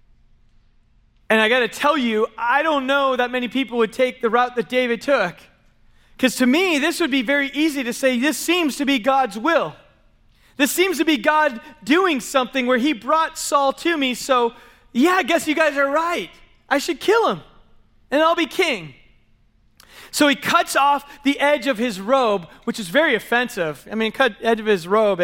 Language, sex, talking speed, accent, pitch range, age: English, male, 200 wpm, American, 200-270 Hz, 30-49